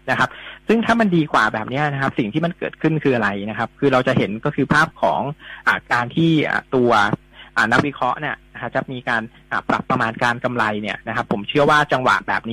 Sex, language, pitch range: male, Thai, 120-150 Hz